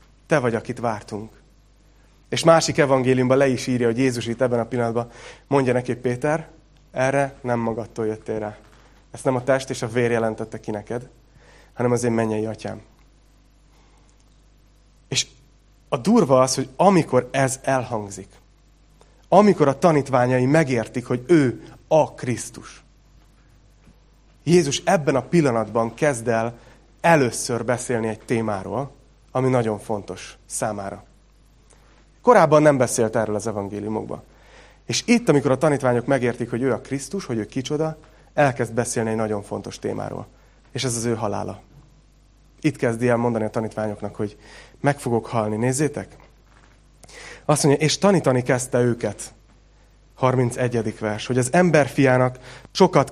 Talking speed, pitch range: 140 wpm, 115-140 Hz